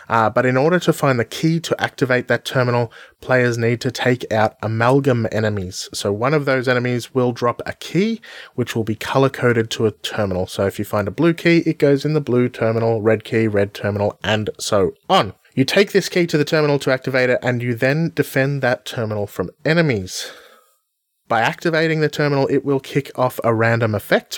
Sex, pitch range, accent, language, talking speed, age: male, 115-145 Hz, Australian, English, 210 wpm, 20-39